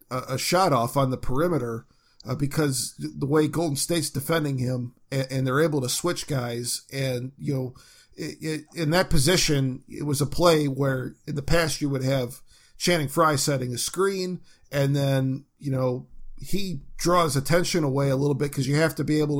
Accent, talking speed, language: American, 190 wpm, English